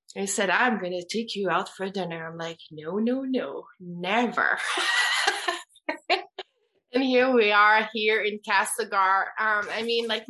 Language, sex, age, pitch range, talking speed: English, female, 20-39, 210-260 Hz, 155 wpm